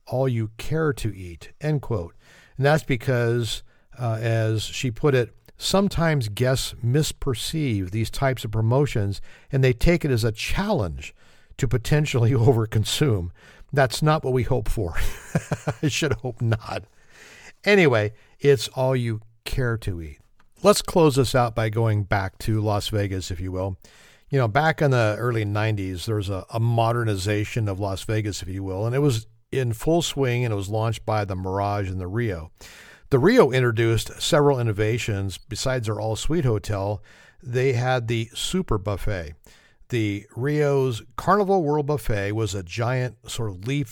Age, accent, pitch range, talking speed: 50-69, American, 105-130 Hz, 165 wpm